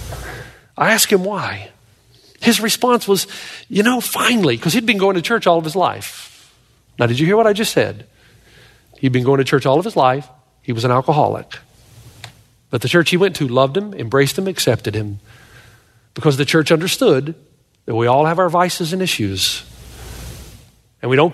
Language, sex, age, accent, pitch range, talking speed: English, male, 40-59, American, 125-185 Hz, 190 wpm